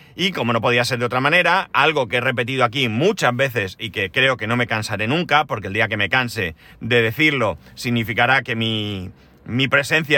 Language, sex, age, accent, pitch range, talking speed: Spanish, male, 30-49, Spanish, 115-145 Hz, 210 wpm